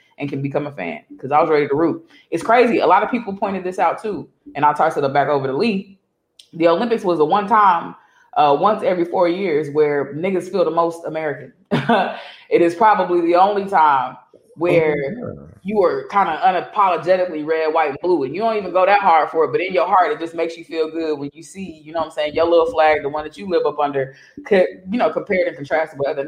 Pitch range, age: 155-205 Hz, 20-39